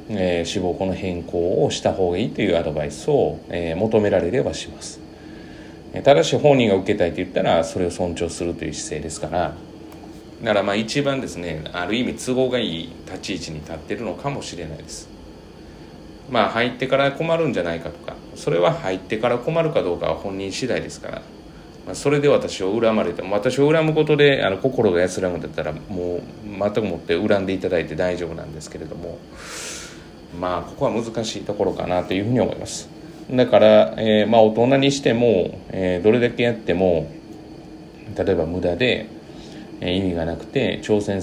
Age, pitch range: 40-59, 85-120 Hz